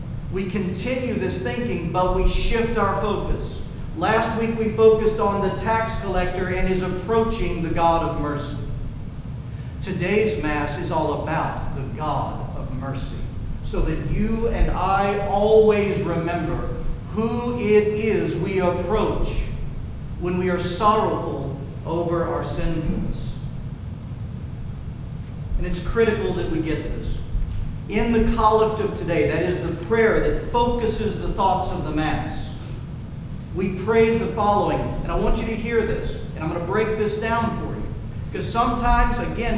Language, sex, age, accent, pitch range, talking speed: English, male, 40-59, American, 150-215 Hz, 150 wpm